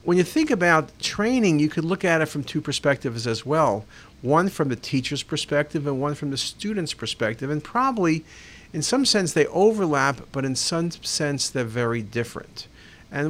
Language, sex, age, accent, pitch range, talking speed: English, male, 50-69, American, 135-180 Hz, 185 wpm